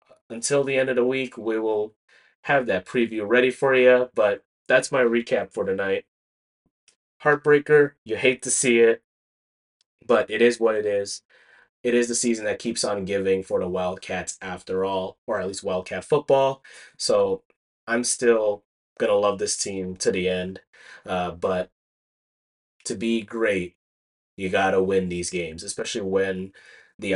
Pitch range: 95-125 Hz